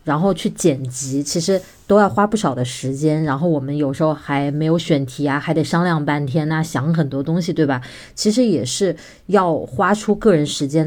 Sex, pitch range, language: female, 145-185 Hz, Chinese